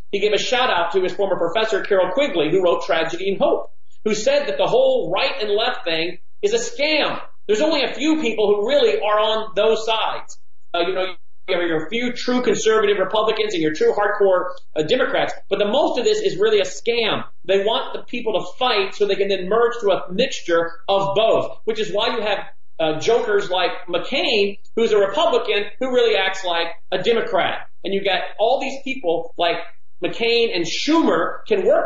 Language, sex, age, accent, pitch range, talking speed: English, male, 40-59, American, 180-250 Hz, 205 wpm